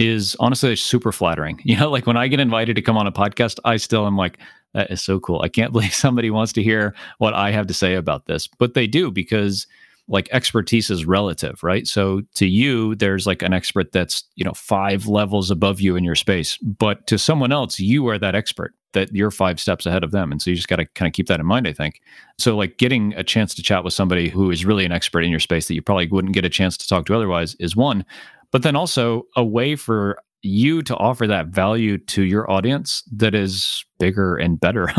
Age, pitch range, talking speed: 30-49, 95-120 Hz, 245 wpm